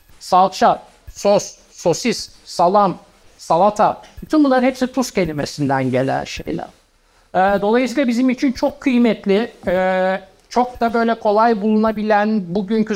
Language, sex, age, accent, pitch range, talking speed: Turkish, male, 60-79, native, 170-225 Hz, 115 wpm